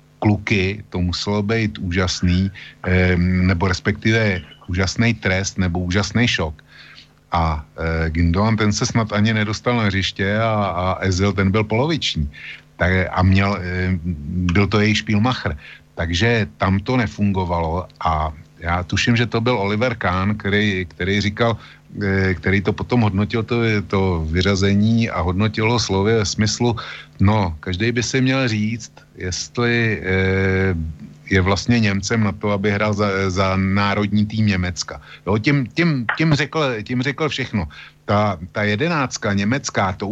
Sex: male